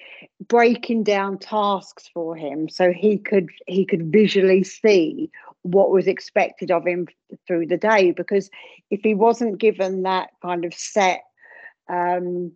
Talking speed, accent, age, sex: 145 wpm, British, 50-69, female